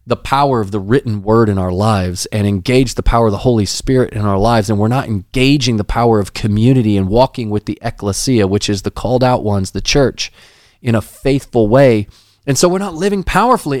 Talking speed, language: 220 wpm, English